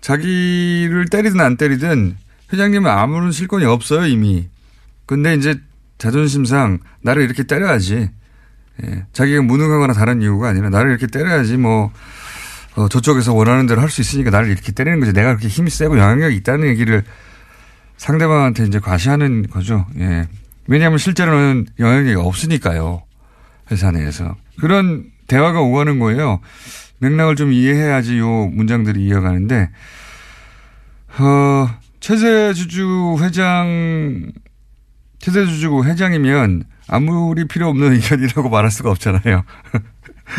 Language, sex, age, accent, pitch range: Korean, male, 30-49, native, 105-150 Hz